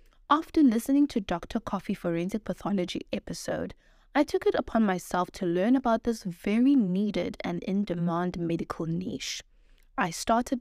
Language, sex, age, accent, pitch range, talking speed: English, female, 20-39, South African, 185-250 Hz, 140 wpm